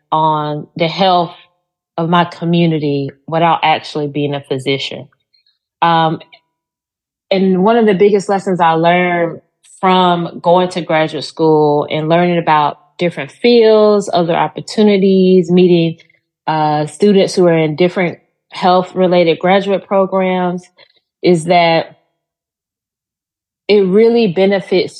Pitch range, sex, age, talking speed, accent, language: 160-190 Hz, female, 30-49, 115 wpm, American, English